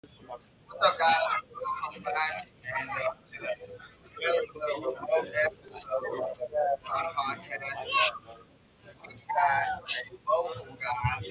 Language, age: English, 20-39